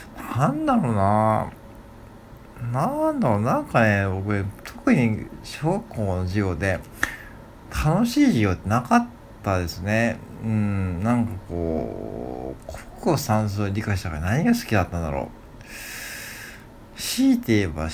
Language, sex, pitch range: Japanese, male, 95-115 Hz